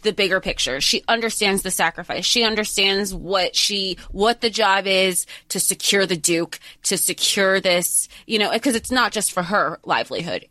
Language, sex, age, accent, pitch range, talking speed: English, female, 20-39, American, 160-200 Hz, 175 wpm